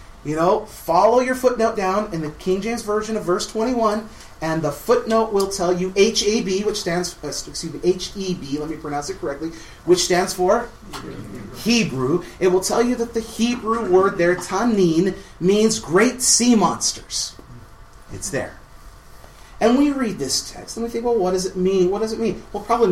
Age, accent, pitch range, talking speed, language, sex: 30-49, American, 150-200 Hz, 185 wpm, English, male